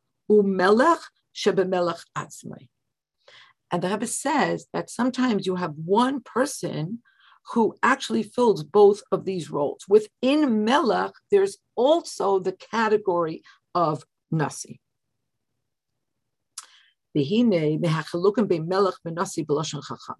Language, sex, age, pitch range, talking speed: English, female, 50-69, 175-235 Hz, 75 wpm